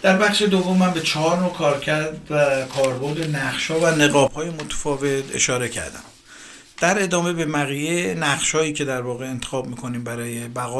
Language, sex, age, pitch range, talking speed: Persian, male, 50-69, 135-175 Hz, 170 wpm